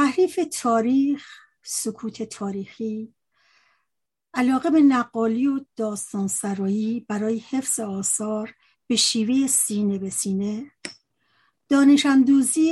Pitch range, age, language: 215-255 Hz, 60-79, Persian